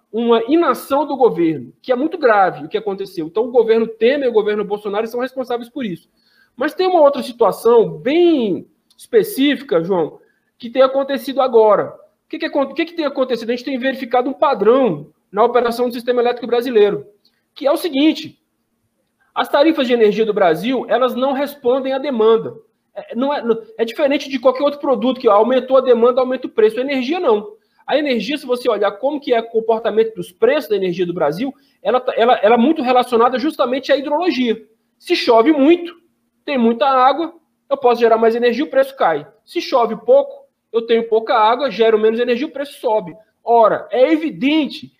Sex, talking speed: male, 190 wpm